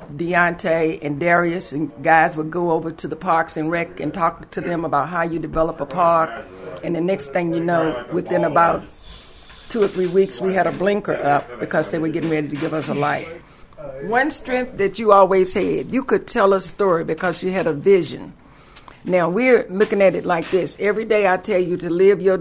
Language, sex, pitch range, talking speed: English, female, 165-195 Hz, 215 wpm